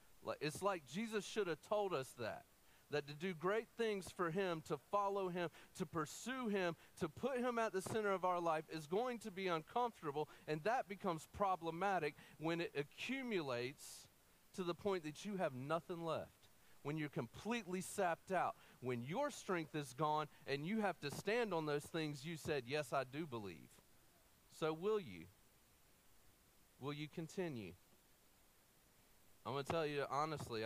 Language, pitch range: English, 120-175 Hz